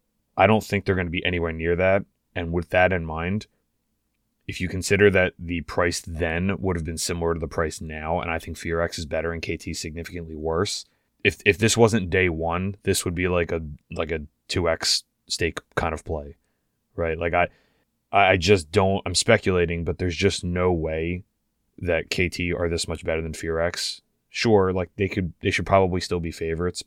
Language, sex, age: English, male, 20-39